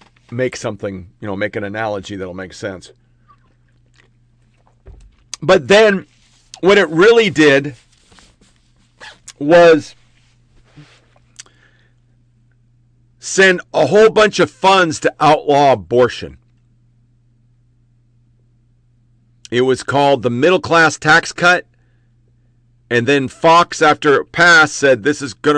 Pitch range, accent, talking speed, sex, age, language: 120-145 Hz, American, 105 wpm, male, 50-69, English